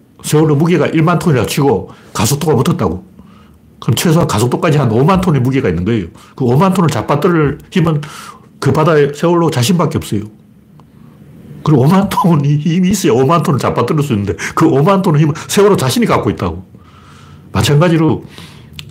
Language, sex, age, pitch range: Korean, male, 60-79, 120-180 Hz